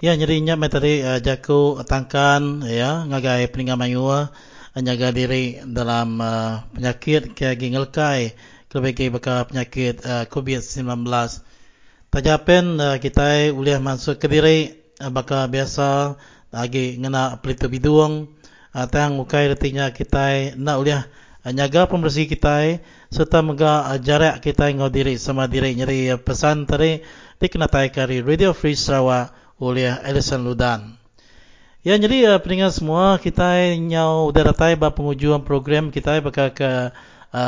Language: English